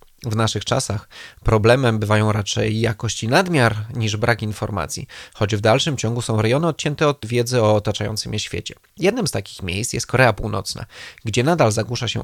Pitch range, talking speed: 110-130 Hz, 170 wpm